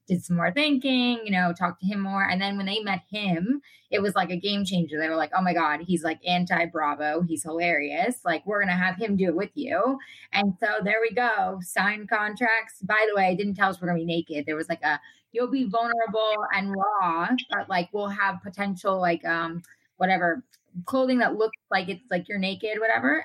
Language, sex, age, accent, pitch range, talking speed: English, female, 20-39, American, 180-235 Hz, 225 wpm